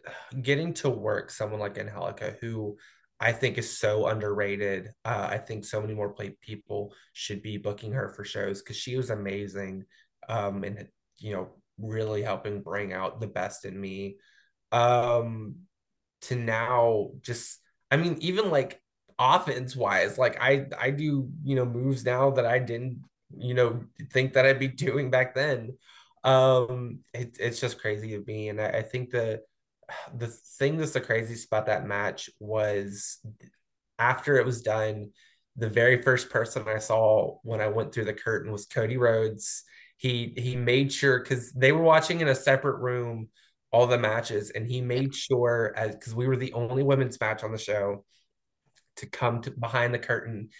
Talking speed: 175 wpm